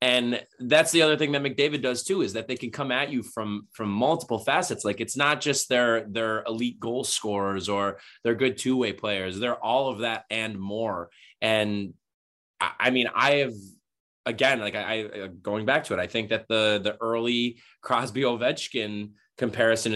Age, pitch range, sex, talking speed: 20-39, 105-125 Hz, male, 185 wpm